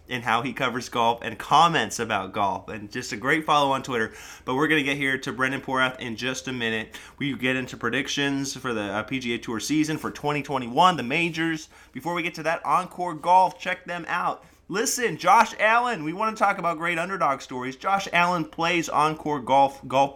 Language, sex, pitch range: English, male, 130-165 Hz